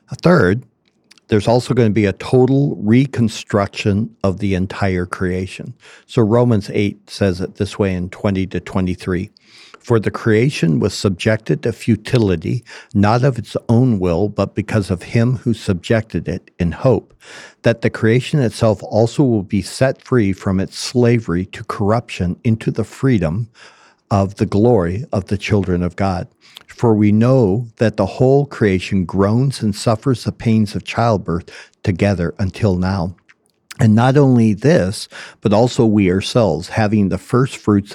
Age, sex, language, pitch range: 60-79, male, English, 95-120 Hz